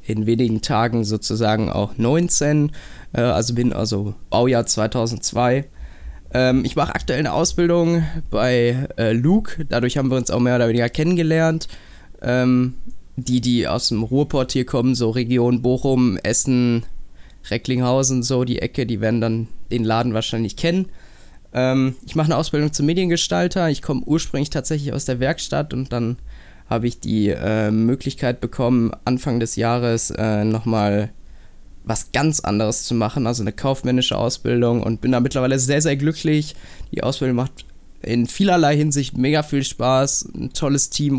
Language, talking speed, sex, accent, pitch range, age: German, 150 wpm, male, German, 115-135 Hz, 20-39